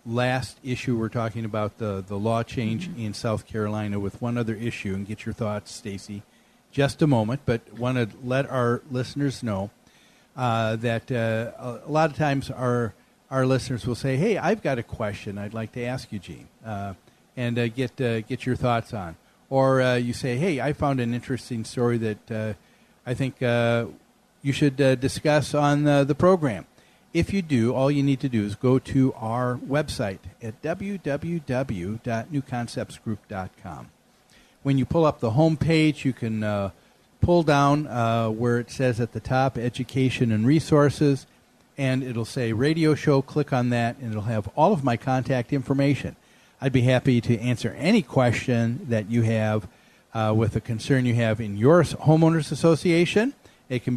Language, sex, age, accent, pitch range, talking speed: English, male, 40-59, American, 115-140 Hz, 180 wpm